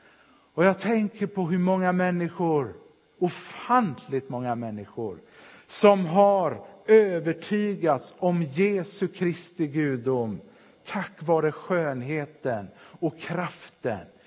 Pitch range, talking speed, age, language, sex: 155-195 Hz, 95 wpm, 50-69, Swedish, male